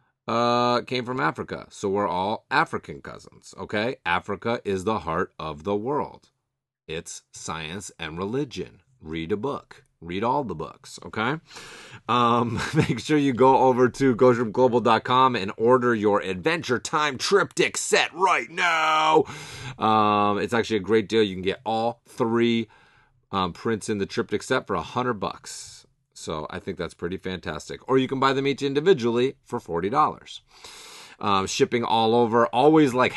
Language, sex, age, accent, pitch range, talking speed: English, male, 30-49, American, 100-125 Hz, 160 wpm